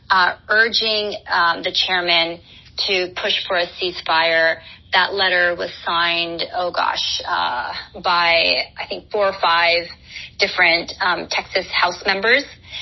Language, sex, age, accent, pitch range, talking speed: English, female, 30-49, American, 175-205 Hz, 130 wpm